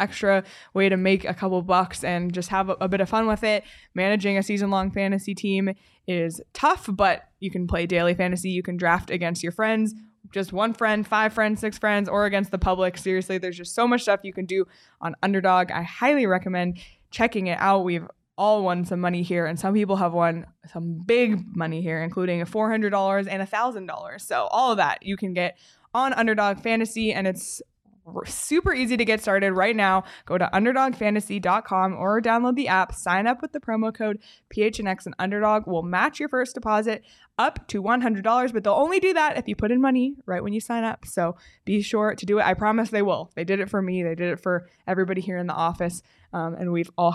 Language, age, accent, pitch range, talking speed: English, 20-39, American, 180-220 Hz, 220 wpm